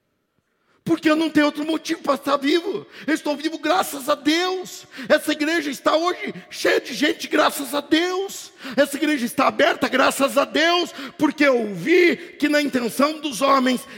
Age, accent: 50-69, Brazilian